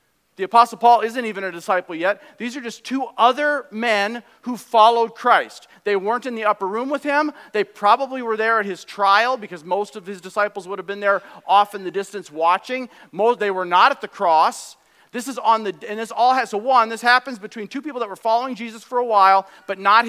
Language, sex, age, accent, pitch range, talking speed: English, male, 40-59, American, 200-245 Hz, 230 wpm